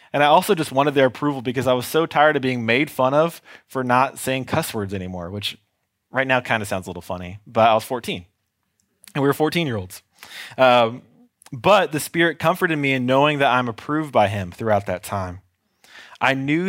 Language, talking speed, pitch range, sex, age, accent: English, 215 wpm, 100-130 Hz, male, 20-39, American